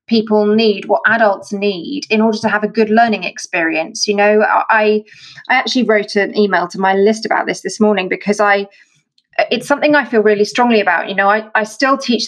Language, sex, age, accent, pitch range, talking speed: English, female, 20-39, British, 205-255 Hz, 210 wpm